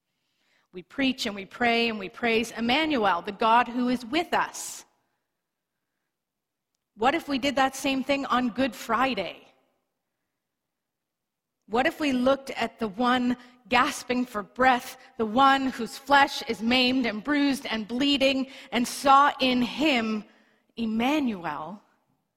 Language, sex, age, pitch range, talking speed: English, female, 30-49, 200-255 Hz, 135 wpm